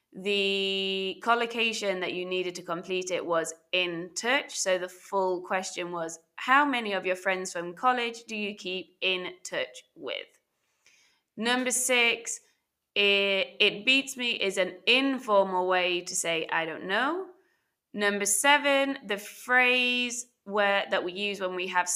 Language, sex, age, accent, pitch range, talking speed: English, female, 20-39, British, 185-245 Hz, 150 wpm